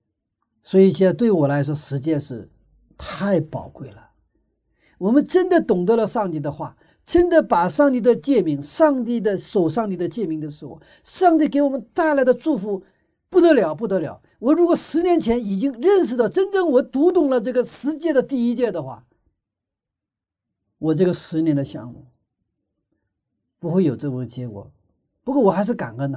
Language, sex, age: Chinese, male, 50-69